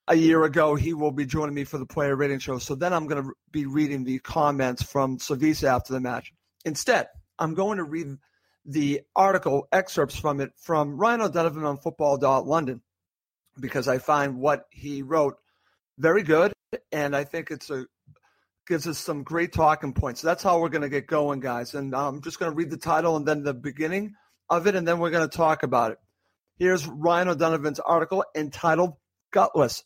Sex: male